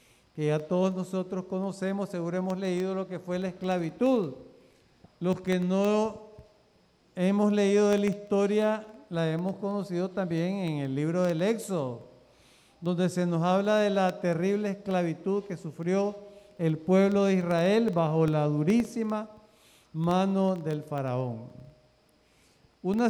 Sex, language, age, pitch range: male, Spanish, 50-69, 170-205 Hz